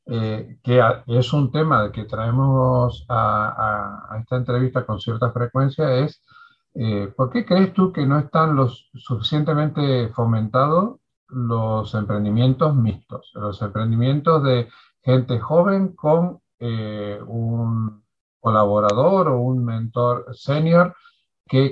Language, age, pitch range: Spanish, 50-69, 110-145 Hz